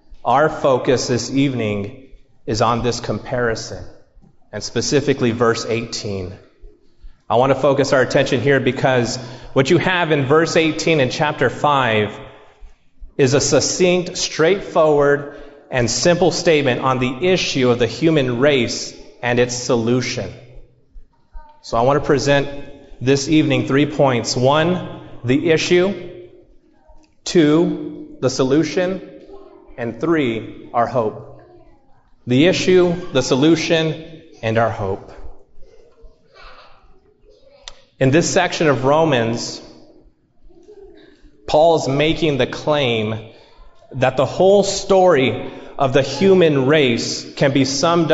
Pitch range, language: 125-170 Hz, English